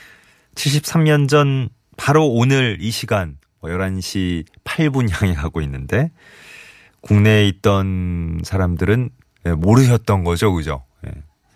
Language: Korean